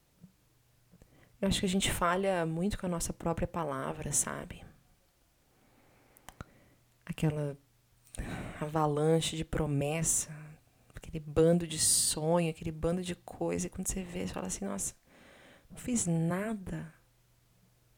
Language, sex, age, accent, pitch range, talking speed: Portuguese, female, 20-39, Brazilian, 125-190 Hz, 120 wpm